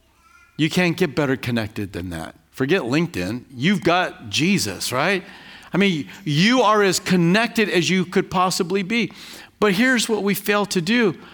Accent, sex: American, male